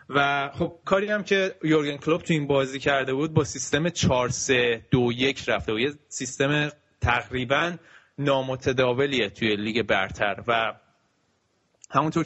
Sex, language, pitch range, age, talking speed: male, Persian, 120-145 Hz, 20-39, 125 wpm